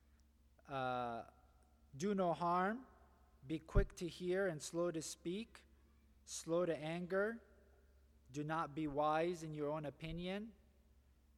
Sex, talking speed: male, 120 wpm